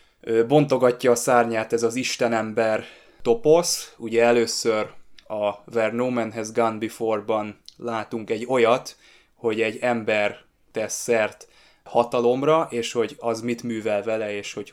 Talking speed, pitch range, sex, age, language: 125 wpm, 110-125 Hz, male, 20-39, Hungarian